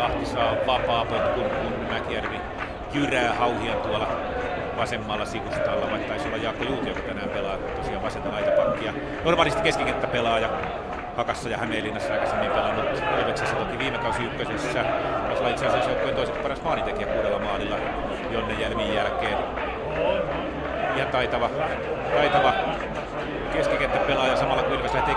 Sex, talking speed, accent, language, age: male, 125 wpm, native, Finnish, 30-49